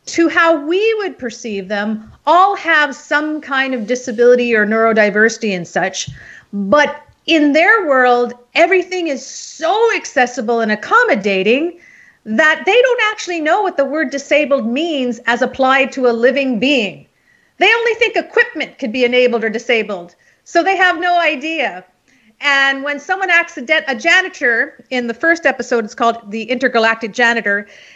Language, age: English, 40-59